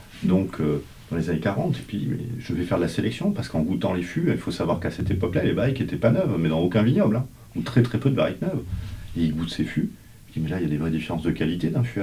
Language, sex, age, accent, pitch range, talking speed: French, male, 40-59, French, 85-115 Hz, 305 wpm